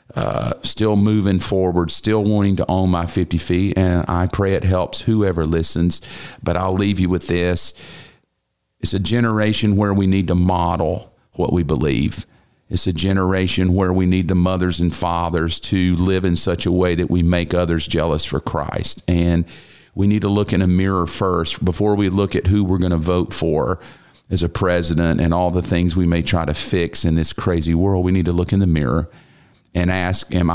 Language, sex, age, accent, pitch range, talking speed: English, male, 40-59, American, 85-100 Hz, 200 wpm